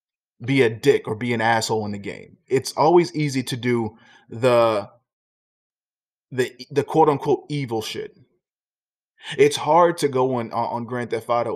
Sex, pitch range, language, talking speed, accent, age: male, 115-150 Hz, English, 155 wpm, American, 20-39